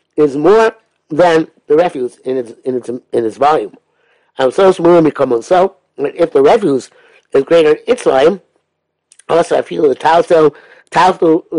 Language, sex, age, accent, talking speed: English, male, 60-79, American, 175 wpm